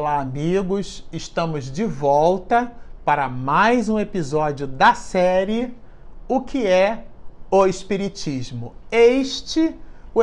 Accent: Brazilian